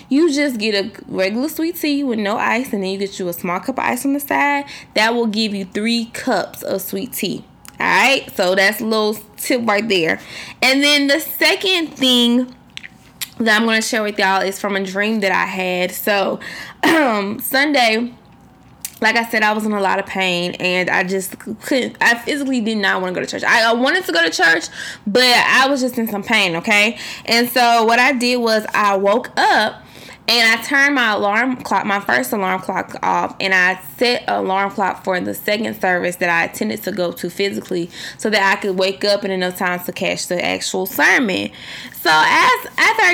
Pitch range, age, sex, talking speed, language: 195-255 Hz, 20-39, female, 215 wpm, English